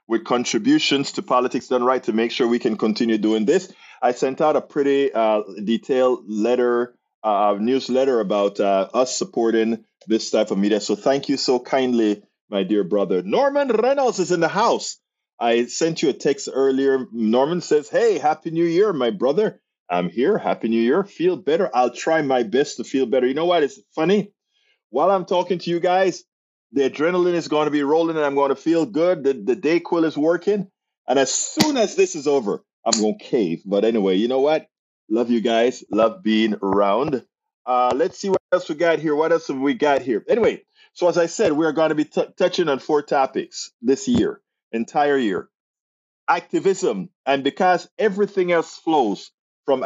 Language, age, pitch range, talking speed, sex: English, 30-49, 120-180 Hz, 200 wpm, male